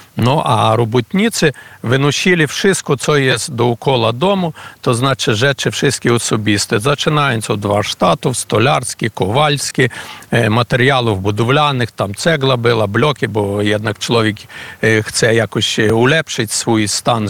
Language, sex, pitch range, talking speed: Polish, male, 110-140 Hz, 120 wpm